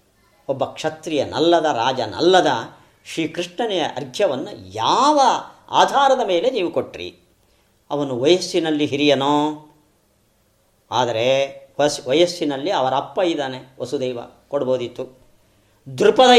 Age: 40-59